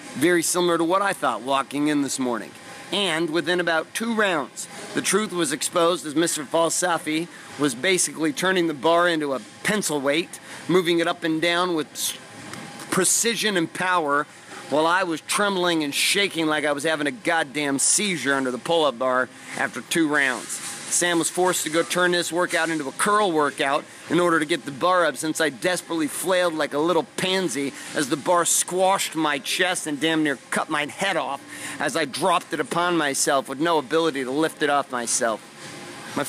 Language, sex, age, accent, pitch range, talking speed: English, male, 40-59, American, 145-175 Hz, 190 wpm